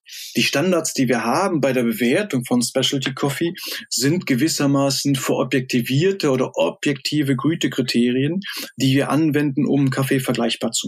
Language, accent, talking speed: German, German, 130 wpm